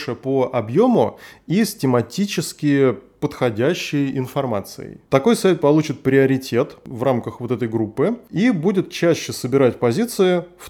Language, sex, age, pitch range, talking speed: Russian, male, 20-39, 115-150 Hz, 125 wpm